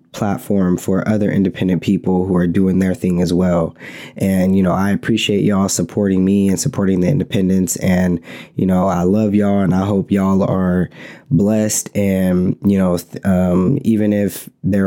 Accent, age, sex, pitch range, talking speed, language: American, 20-39, male, 95-105 Hz, 175 wpm, English